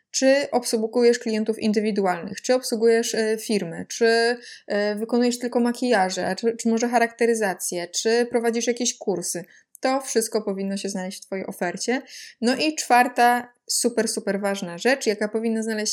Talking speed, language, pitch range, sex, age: 145 wpm, Polish, 200-230 Hz, female, 20-39